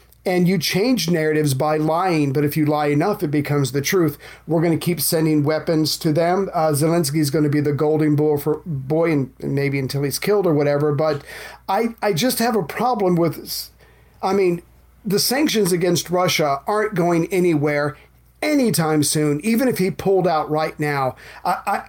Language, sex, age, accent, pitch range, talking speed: English, male, 40-59, American, 150-180 Hz, 185 wpm